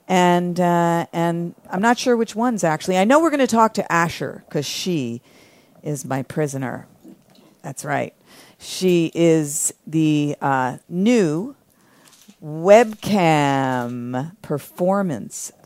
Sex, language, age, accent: female, English, 50-69, American